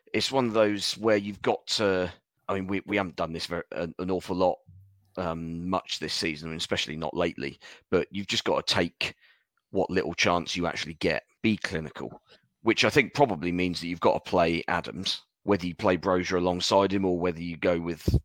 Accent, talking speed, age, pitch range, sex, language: British, 205 wpm, 30-49, 85-95 Hz, male, English